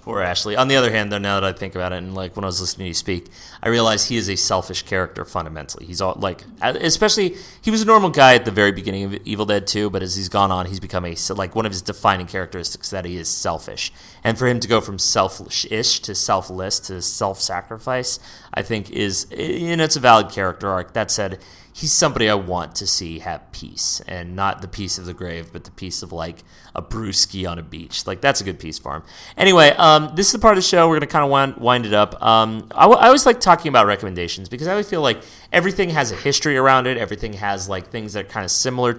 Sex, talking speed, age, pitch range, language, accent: male, 255 wpm, 30-49, 95-120 Hz, English, American